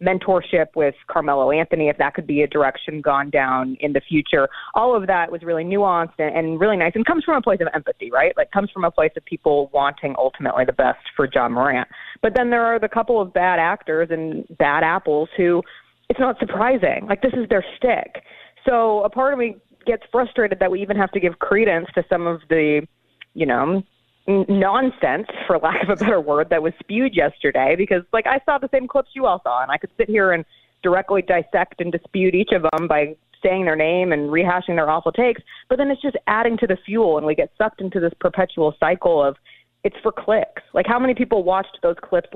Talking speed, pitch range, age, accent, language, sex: 220 wpm, 160-220 Hz, 30-49, American, English, female